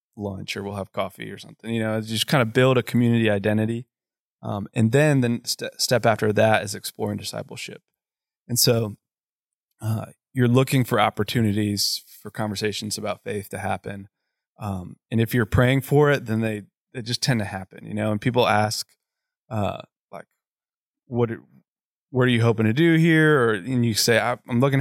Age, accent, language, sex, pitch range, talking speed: 20-39, American, English, male, 105-125 Hz, 175 wpm